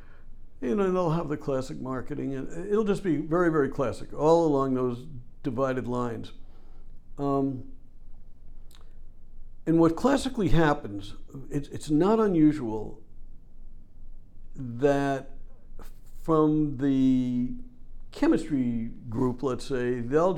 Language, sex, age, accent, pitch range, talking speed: English, male, 60-79, American, 125-160 Hz, 100 wpm